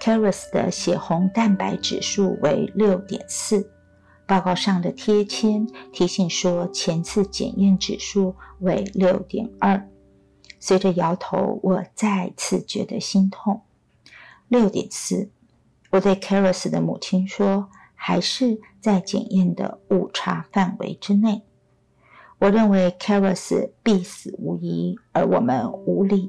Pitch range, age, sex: 185-210 Hz, 50-69, female